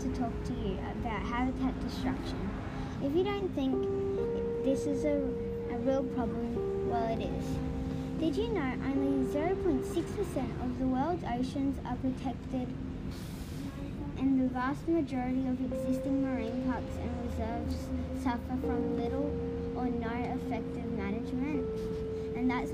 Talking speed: 135 wpm